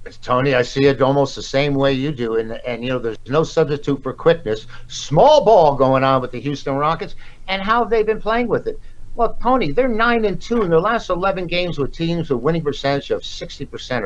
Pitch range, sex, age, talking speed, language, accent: 125-170 Hz, male, 60-79, 230 wpm, English, American